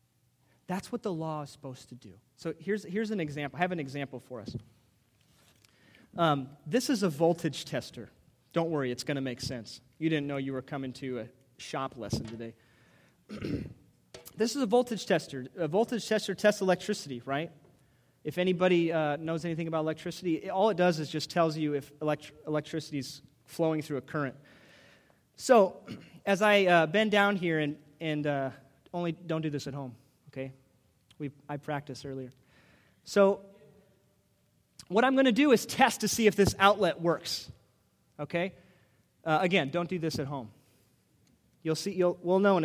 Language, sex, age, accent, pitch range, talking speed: English, male, 30-49, American, 130-180 Hz, 175 wpm